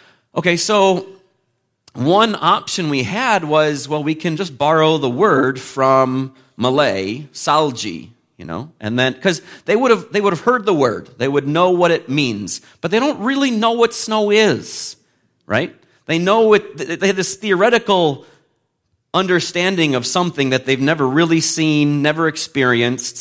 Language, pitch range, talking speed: English, 125-175 Hz, 165 wpm